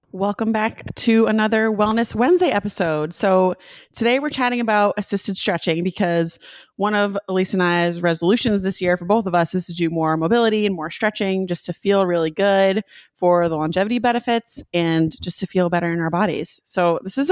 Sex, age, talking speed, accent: female, 20-39, 190 wpm, American